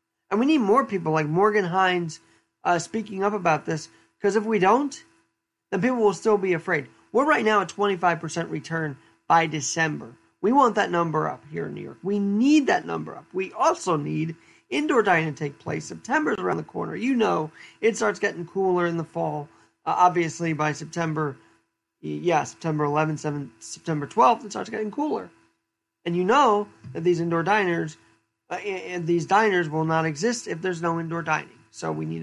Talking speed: 190 wpm